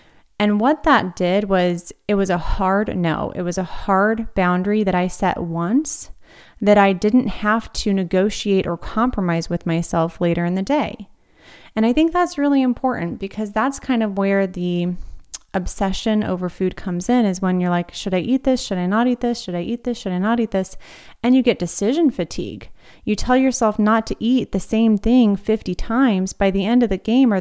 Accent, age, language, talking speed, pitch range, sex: American, 30-49, English, 210 wpm, 180-225 Hz, female